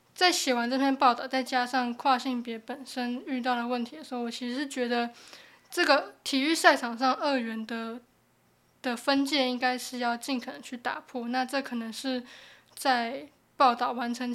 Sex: female